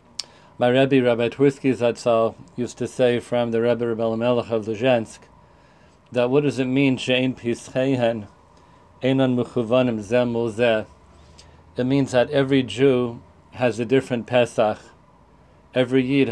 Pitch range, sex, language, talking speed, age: 115-130 Hz, male, English, 115 wpm, 50-69